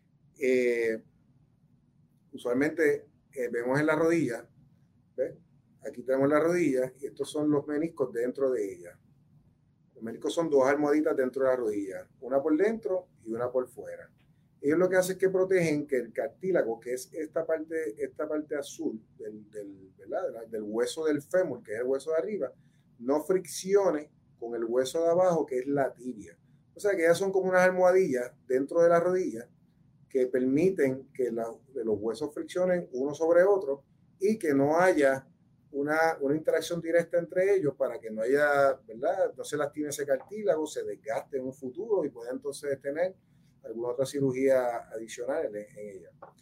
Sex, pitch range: male, 130-175 Hz